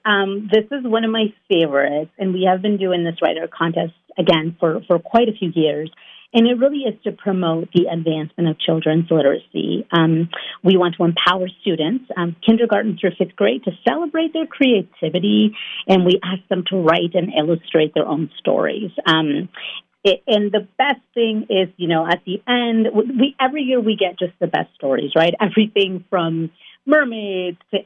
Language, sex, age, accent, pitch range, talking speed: English, female, 40-59, American, 170-220 Hz, 180 wpm